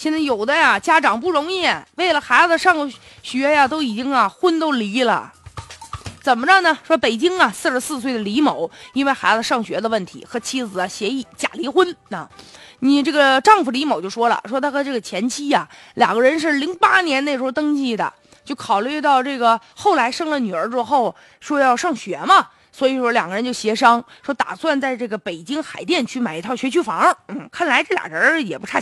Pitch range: 235-330 Hz